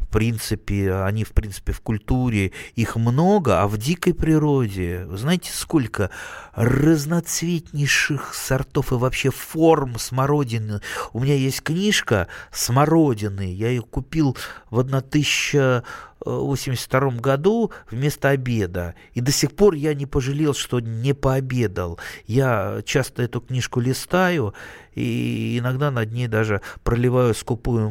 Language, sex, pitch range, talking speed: Russian, male, 110-140 Hz, 125 wpm